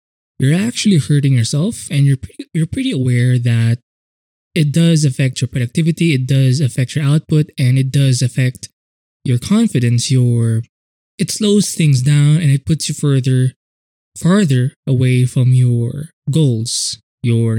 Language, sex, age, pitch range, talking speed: English, male, 20-39, 120-150 Hz, 145 wpm